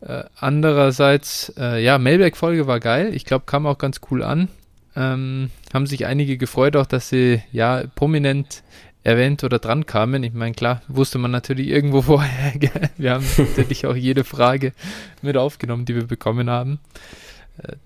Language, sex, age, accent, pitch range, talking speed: German, male, 20-39, German, 115-145 Hz, 170 wpm